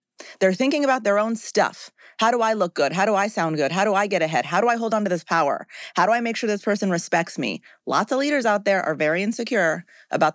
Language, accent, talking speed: English, American, 270 wpm